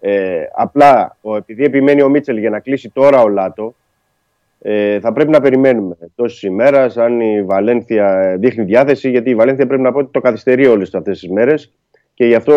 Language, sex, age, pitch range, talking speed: Greek, male, 30-49, 110-140 Hz, 195 wpm